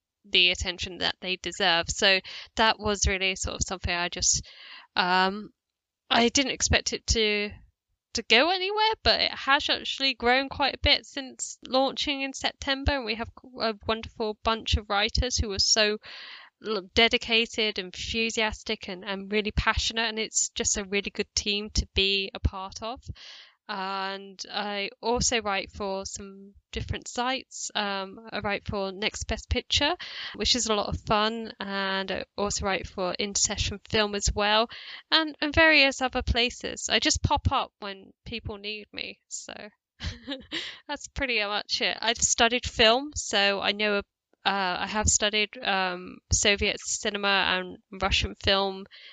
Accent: British